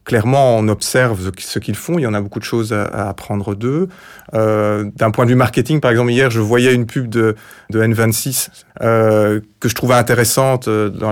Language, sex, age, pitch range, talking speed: French, male, 30-49, 115-135 Hz, 205 wpm